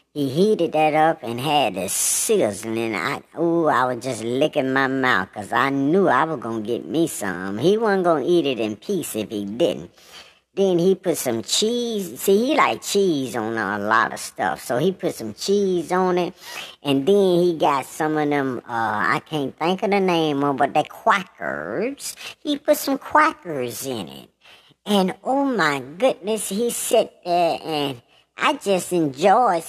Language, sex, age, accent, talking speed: English, male, 60-79, American, 190 wpm